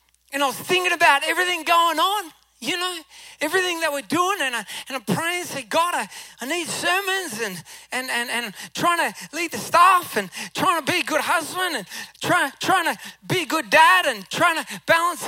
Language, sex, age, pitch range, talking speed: English, male, 20-39, 295-365 Hz, 210 wpm